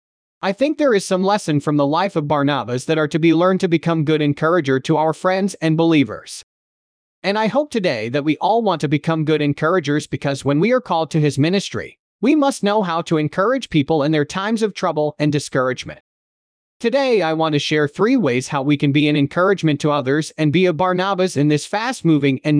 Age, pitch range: 30-49, 145-185 Hz